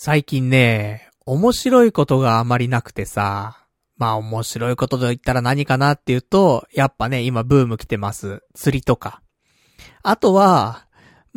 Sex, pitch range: male, 115-165 Hz